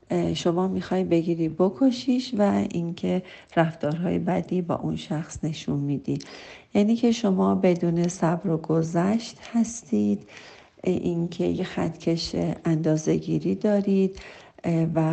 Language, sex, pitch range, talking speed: Persian, female, 160-185 Hz, 110 wpm